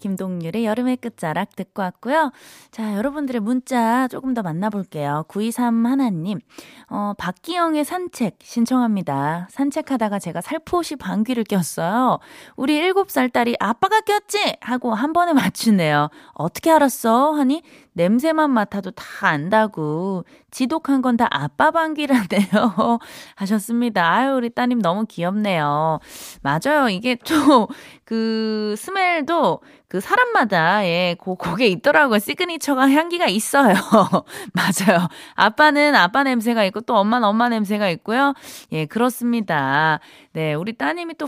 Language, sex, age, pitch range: Korean, female, 20-39, 185-275 Hz